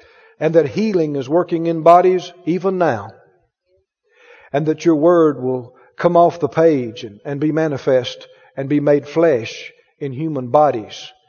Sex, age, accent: male, 50-69, American